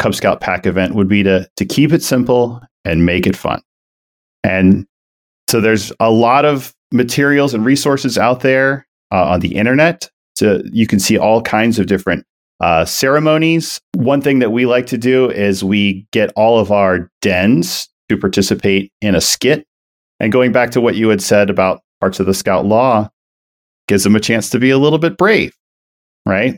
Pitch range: 95-135 Hz